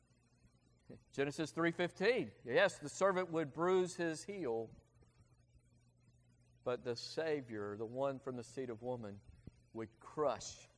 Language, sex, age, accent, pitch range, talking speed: English, male, 40-59, American, 120-185 Hz, 115 wpm